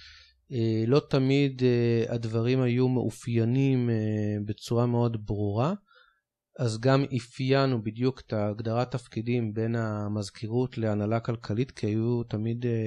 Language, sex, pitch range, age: Hebrew, male, 105-130 Hz, 30-49